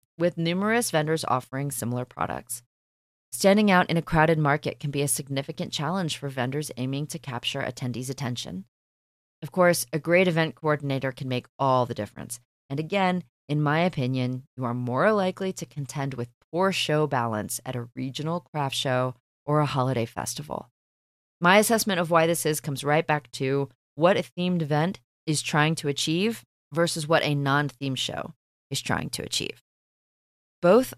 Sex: female